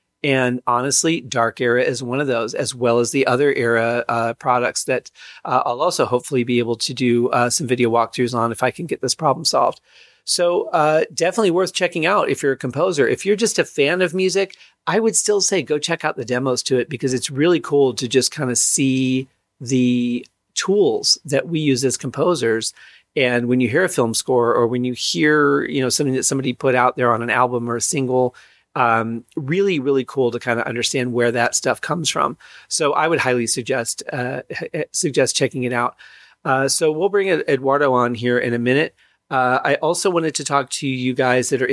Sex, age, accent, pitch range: male, 40-59, American, 120-145 Hz